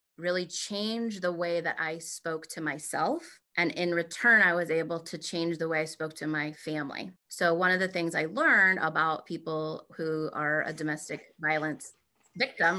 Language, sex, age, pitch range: English, female, 30-49, 160-185 Hz